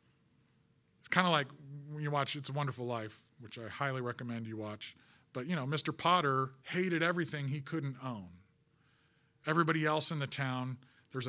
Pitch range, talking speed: 130-160 Hz, 175 wpm